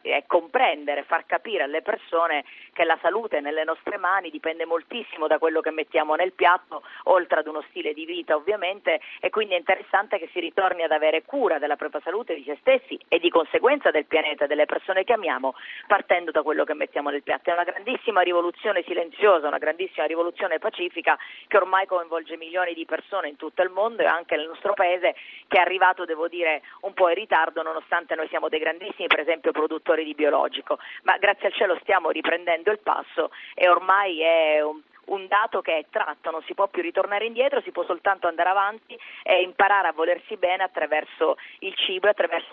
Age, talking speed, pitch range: 40-59, 195 wpm, 160-205 Hz